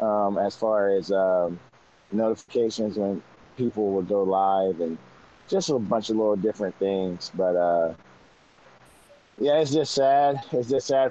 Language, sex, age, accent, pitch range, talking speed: English, male, 20-39, American, 90-110 Hz, 150 wpm